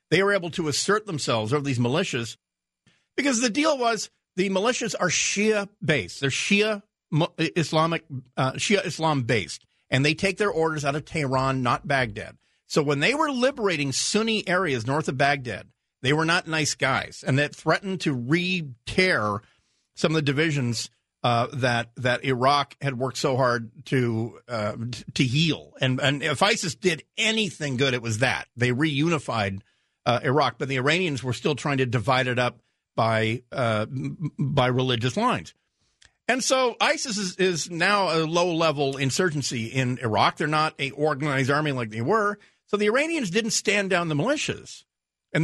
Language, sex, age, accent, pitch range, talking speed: English, male, 50-69, American, 130-185 Hz, 170 wpm